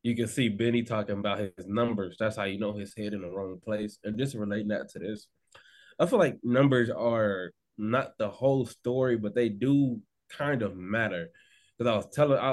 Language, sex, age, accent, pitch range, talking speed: English, male, 20-39, American, 105-130 Hz, 205 wpm